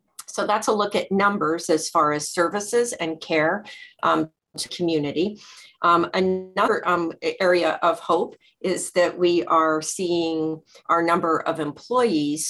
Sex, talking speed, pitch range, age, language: female, 145 wpm, 145-170 Hz, 40-59, English